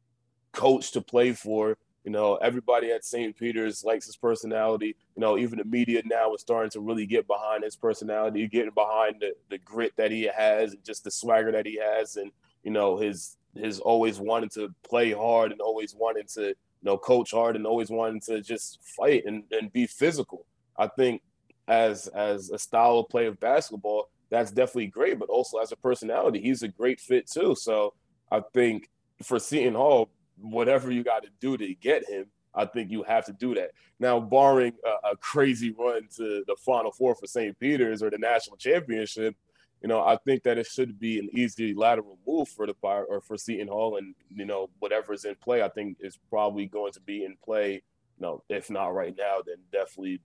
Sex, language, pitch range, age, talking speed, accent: male, English, 105-120 Hz, 20-39, 205 wpm, American